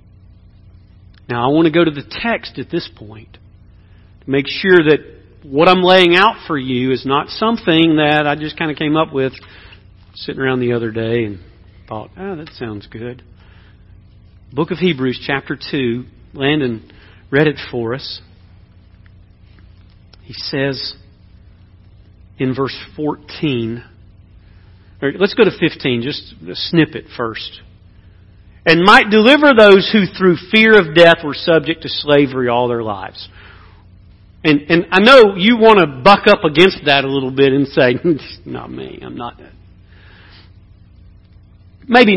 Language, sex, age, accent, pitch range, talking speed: English, male, 40-59, American, 95-150 Hz, 150 wpm